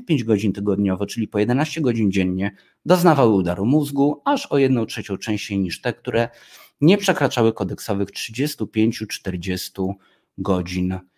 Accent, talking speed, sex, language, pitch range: native, 130 wpm, male, Polish, 95-125 Hz